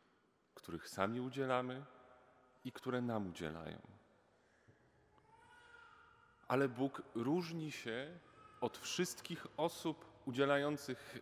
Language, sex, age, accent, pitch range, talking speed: Polish, male, 30-49, native, 110-135 Hz, 80 wpm